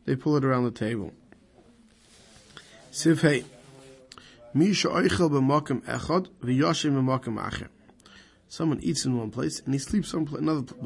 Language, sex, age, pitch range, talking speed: English, male, 20-39, 125-155 Hz, 90 wpm